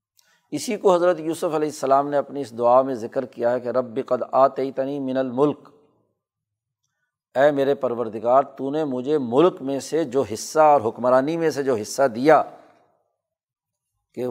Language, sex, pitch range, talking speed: Urdu, male, 125-150 Hz, 165 wpm